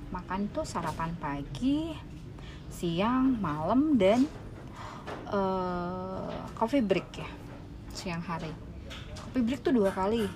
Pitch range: 160-210 Hz